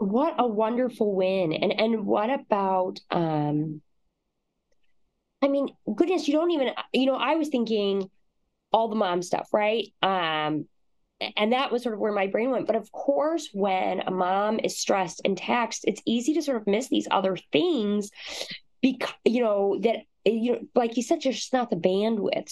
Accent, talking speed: American, 180 wpm